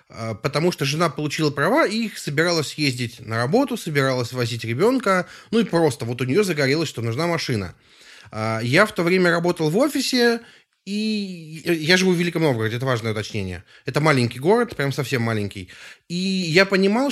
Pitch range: 120-185 Hz